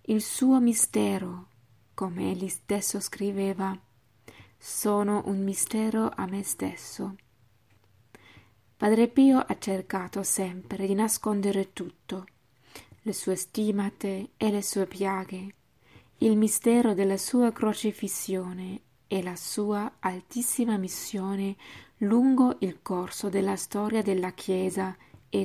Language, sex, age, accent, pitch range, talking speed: Italian, female, 20-39, native, 185-215 Hz, 110 wpm